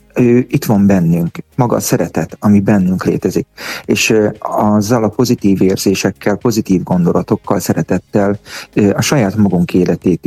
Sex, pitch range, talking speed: male, 95-110 Hz, 125 wpm